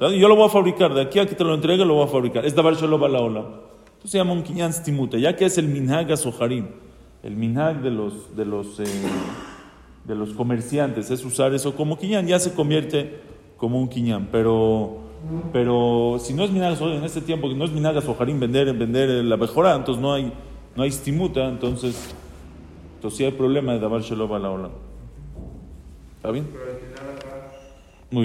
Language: English